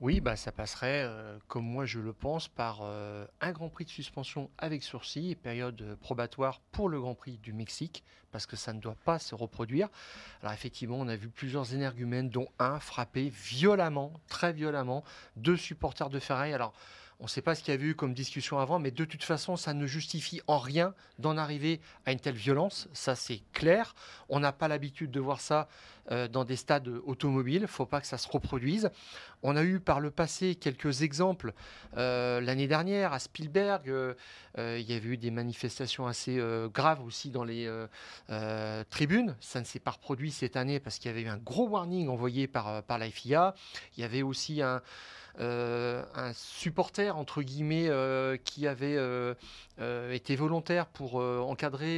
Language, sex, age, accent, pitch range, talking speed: French, male, 40-59, French, 125-155 Hz, 200 wpm